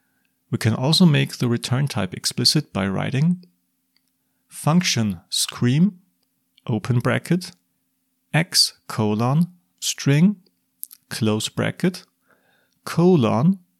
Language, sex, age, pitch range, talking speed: English, male, 30-49, 110-150 Hz, 85 wpm